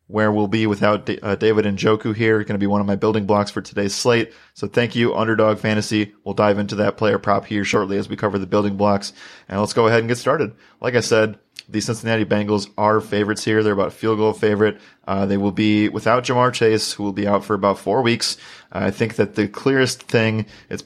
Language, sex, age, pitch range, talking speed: English, male, 30-49, 100-110 Hz, 235 wpm